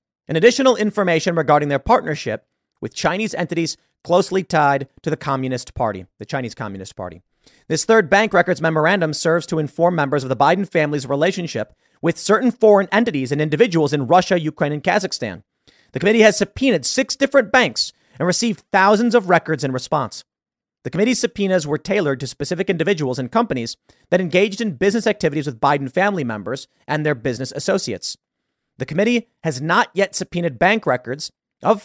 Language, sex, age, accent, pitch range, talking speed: English, male, 40-59, American, 135-195 Hz, 170 wpm